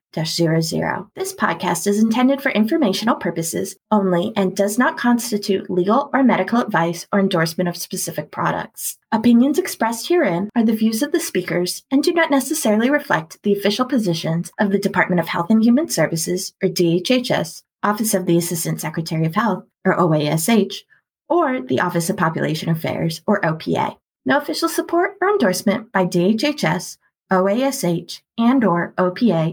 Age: 20-39